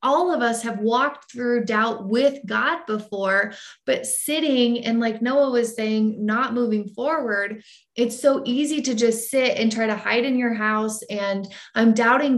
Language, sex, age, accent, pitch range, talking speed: English, female, 20-39, American, 215-275 Hz, 175 wpm